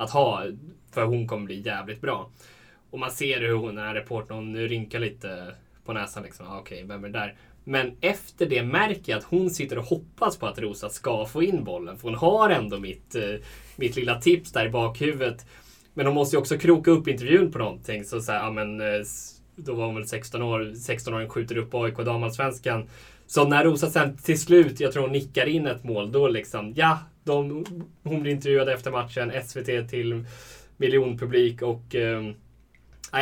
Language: Swedish